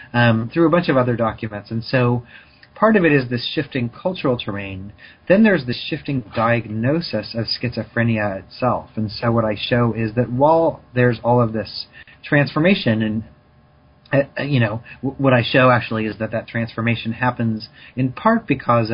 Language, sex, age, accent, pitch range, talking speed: English, male, 30-49, American, 110-130 Hz, 170 wpm